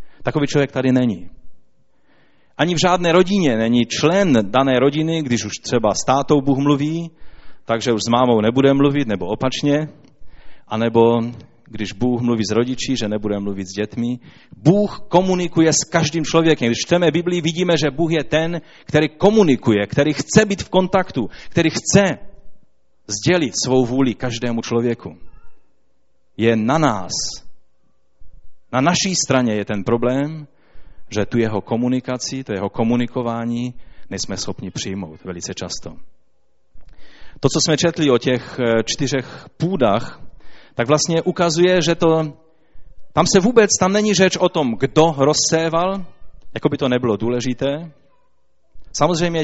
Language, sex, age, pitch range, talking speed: Czech, male, 30-49, 115-160 Hz, 140 wpm